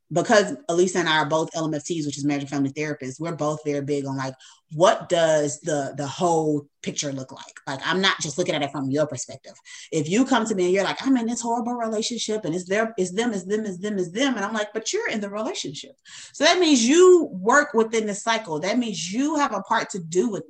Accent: American